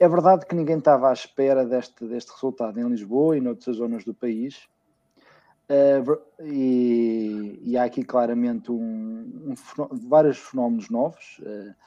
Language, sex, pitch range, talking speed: Portuguese, male, 125-150 Hz, 125 wpm